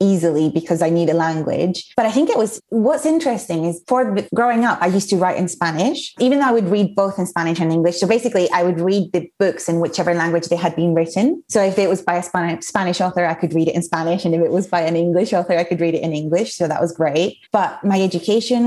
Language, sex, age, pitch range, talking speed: English, female, 20-39, 170-225 Hz, 265 wpm